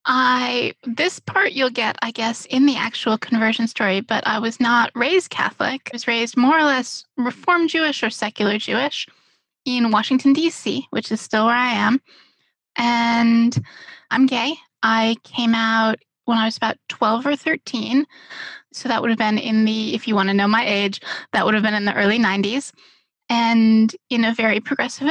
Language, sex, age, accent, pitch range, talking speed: English, female, 10-29, American, 220-270 Hz, 185 wpm